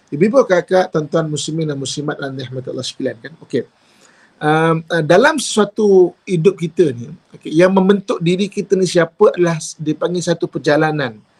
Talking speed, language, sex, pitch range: 165 wpm, English, male, 140-170 Hz